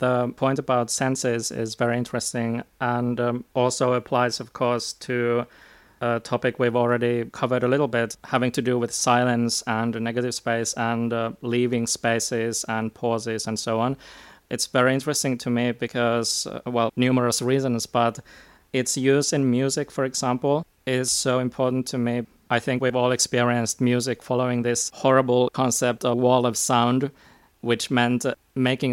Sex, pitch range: male, 120-130 Hz